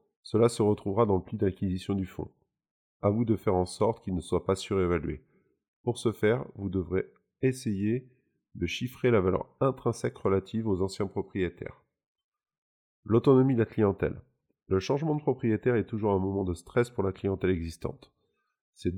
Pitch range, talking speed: 95-115 Hz, 170 wpm